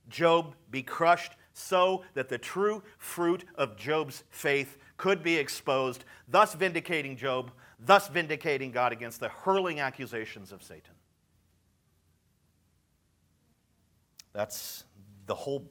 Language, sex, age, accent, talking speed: English, male, 50-69, American, 110 wpm